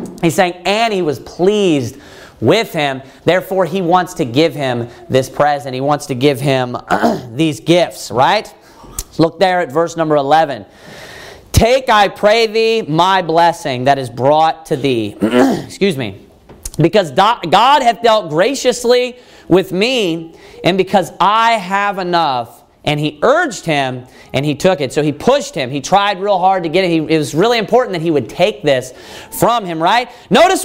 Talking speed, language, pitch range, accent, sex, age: 170 wpm, English, 160-230 Hz, American, male, 40-59